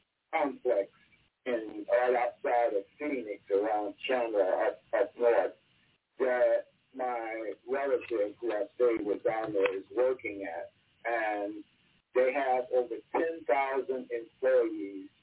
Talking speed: 120 wpm